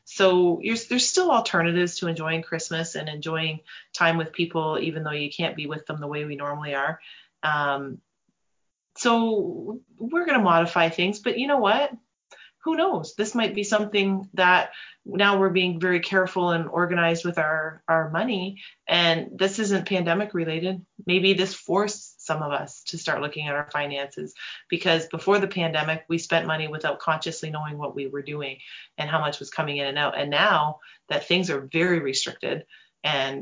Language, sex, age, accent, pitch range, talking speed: English, female, 30-49, American, 150-185 Hz, 180 wpm